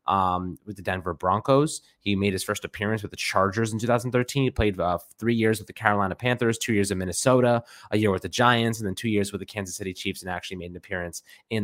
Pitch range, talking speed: 95-110 Hz, 245 wpm